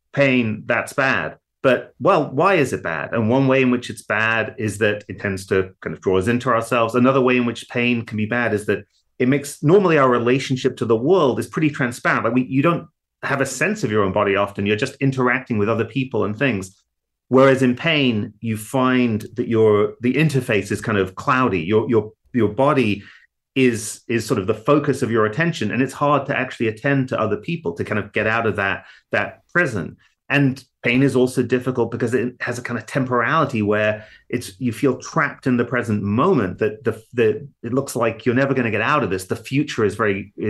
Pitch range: 110-135 Hz